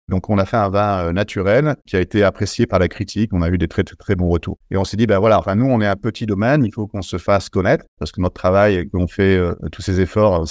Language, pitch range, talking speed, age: French, 95-115 Hz, 310 wpm, 50-69